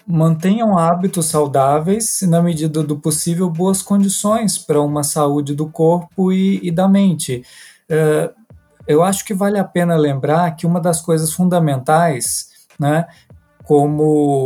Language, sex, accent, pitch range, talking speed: Portuguese, male, Brazilian, 145-190 Hz, 140 wpm